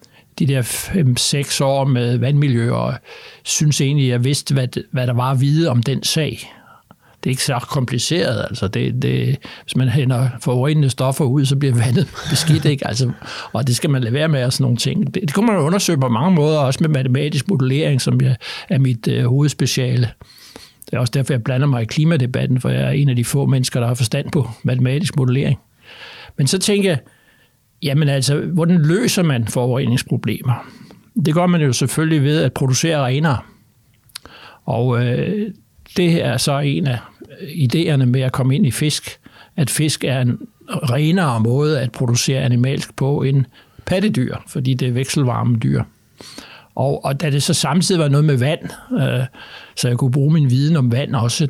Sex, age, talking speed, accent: male, 60-79, 175 wpm, native